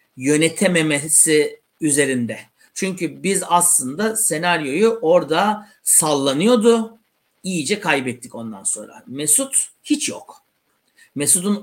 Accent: native